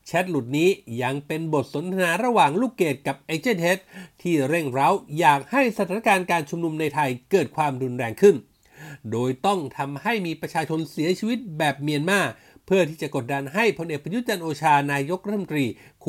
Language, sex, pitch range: Thai, male, 140-200 Hz